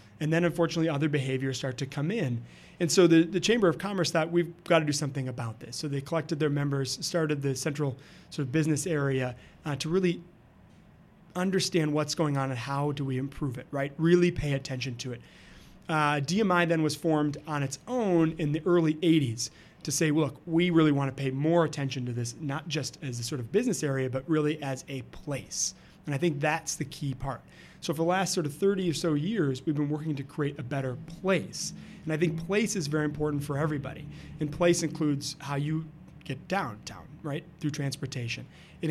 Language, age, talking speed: English, 30-49, 210 wpm